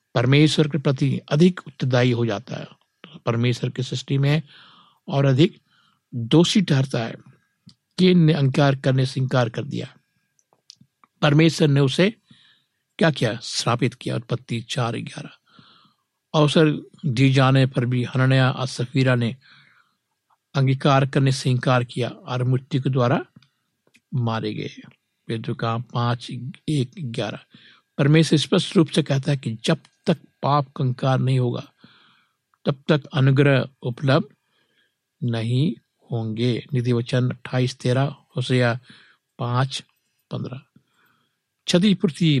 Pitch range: 125-150 Hz